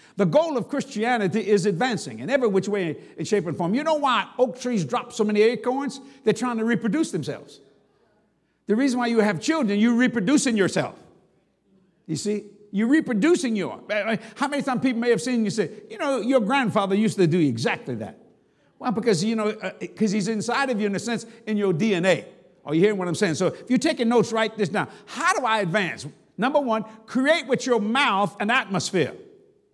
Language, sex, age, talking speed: English, male, 60-79, 205 wpm